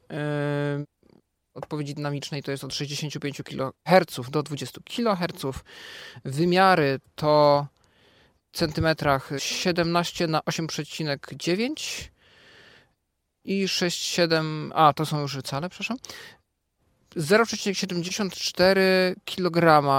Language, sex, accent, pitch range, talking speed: Polish, male, native, 145-185 Hz, 75 wpm